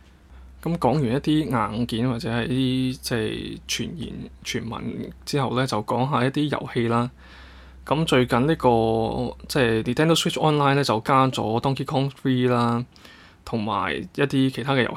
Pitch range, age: 110-130 Hz, 20-39